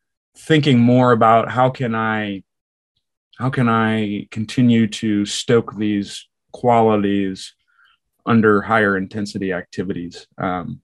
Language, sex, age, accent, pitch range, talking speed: English, male, 30-49, American, 100-115 Hz, 105 wpm